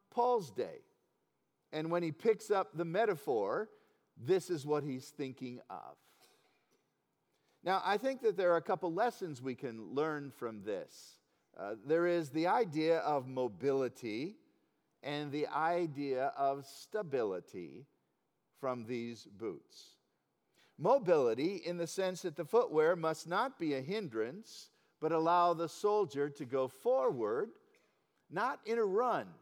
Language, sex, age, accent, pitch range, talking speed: English, male, 50-69, American, 145-200 Hz, 135 wpm